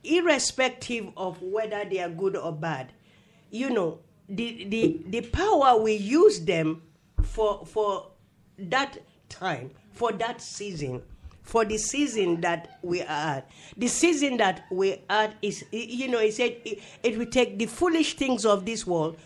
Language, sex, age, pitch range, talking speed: English, female, 50-69, 175-250 Hz, 160 wpm